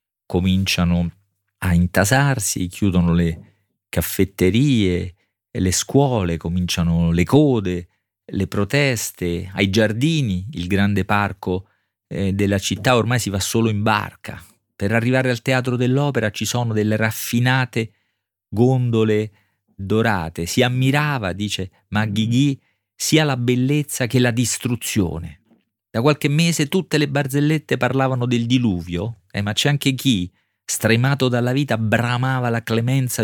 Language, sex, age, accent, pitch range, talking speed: Italian, male, 40-59, native, 95-125 Hz, 125 wpm